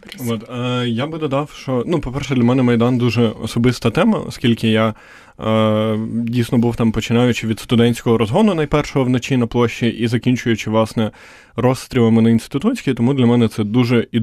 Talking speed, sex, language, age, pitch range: 155 wpm, male, Ukrainian, 20-39, 115-130 Hz